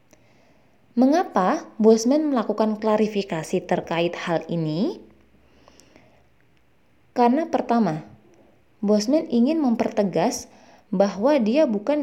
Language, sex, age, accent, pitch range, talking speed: Indonesian, female, 20-39, native, 190-240 Hz, 75 wpm